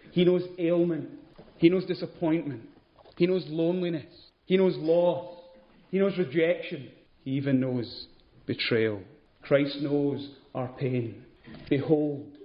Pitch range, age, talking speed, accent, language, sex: 140-180 Hz, 30-49, 115 wpm, British, English, male